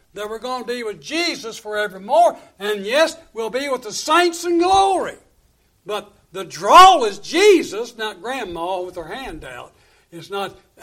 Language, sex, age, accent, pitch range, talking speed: English, male, 60-79, American, 180-280 Hz, 165 wpm